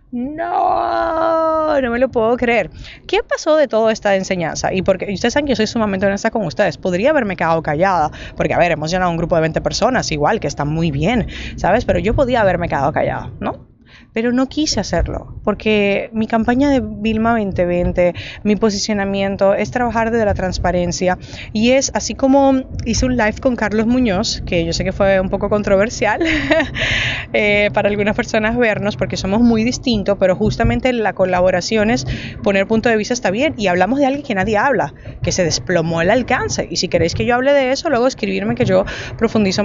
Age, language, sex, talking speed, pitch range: 20-39, Spanish, female, 195 wpm, 180-240 Hz